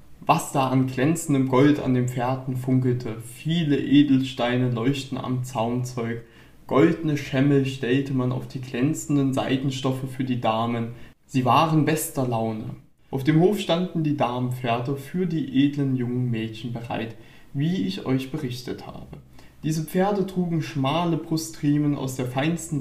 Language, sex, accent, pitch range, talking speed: German, male, German, 125-155 Hz, 140 wpm